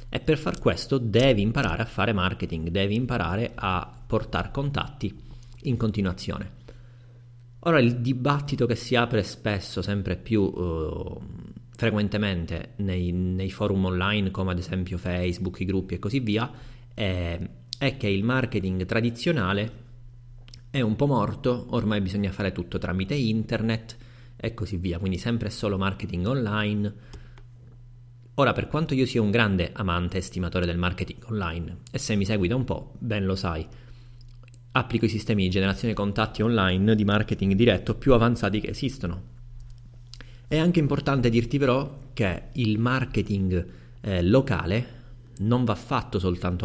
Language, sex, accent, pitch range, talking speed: Italian, male, native, 95-120 Hz, 150 wpm